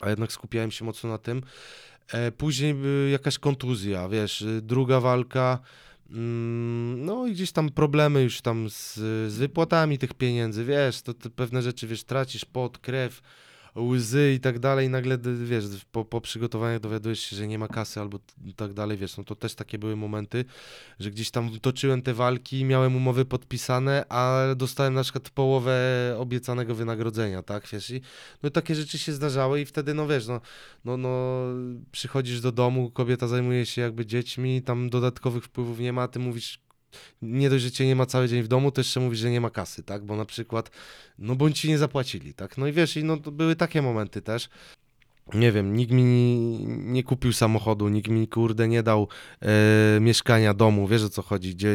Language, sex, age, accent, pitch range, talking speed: Polish, male, 20-39, native, 110-130 Hz, 195 wpm